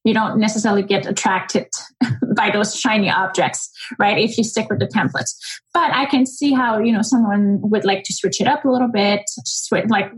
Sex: female